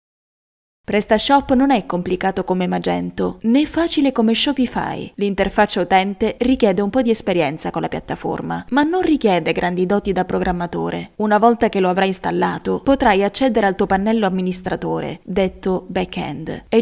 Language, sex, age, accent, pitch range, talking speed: Italian, female, 20-39, native, 185-240 Hz, 150 wpm